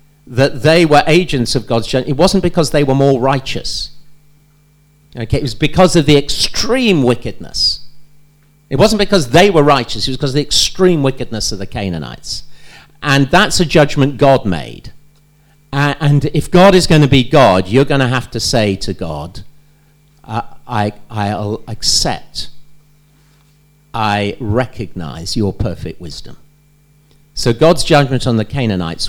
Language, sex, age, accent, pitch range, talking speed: English, male, 50-69, British, 110-150 Hz, 150 wpm